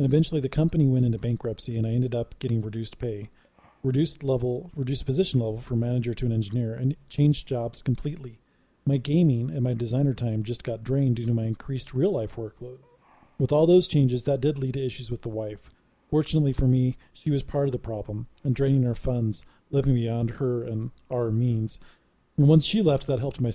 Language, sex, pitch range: English, male, 115-145 Hz